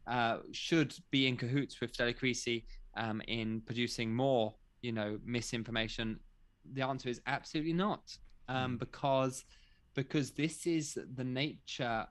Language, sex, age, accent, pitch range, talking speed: English, male, 20-39, British, 110-130 Hz, 125 wpm